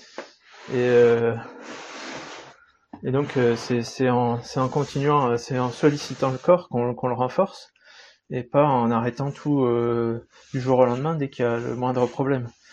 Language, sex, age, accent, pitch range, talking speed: French, male, 20-39, French, 115-135 Hz, 175 wpm